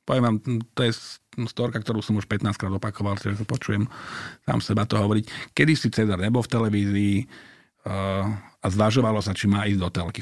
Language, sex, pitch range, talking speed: Slovak, male, 100-120 Hz, 180 wpm